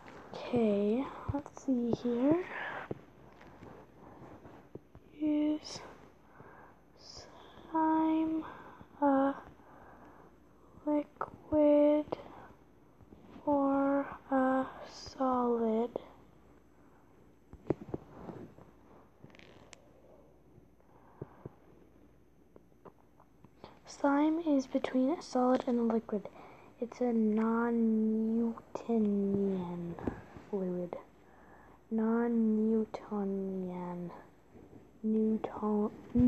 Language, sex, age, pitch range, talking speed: English, female, 10-29, 215-270 Hz, 40 wpm